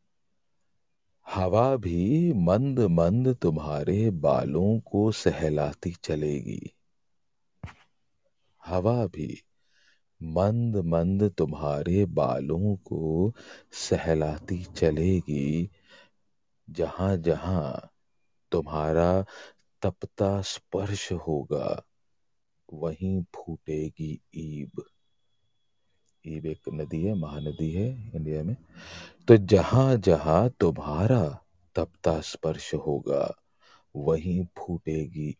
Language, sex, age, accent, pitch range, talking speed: Hindi, male, 40-59, native, 80-100 Hz, 70 wpm